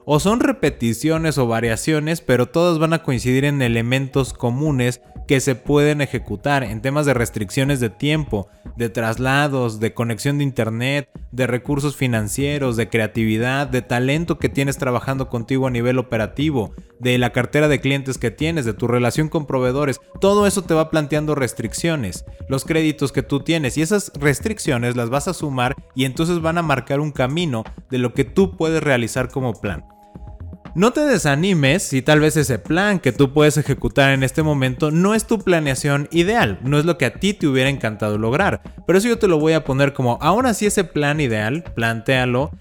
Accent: Mexican